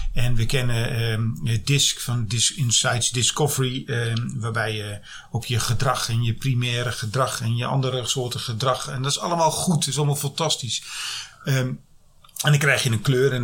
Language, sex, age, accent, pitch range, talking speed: Dutch, male, 40-59, Dutch, 120-145 Hz, 190 wpm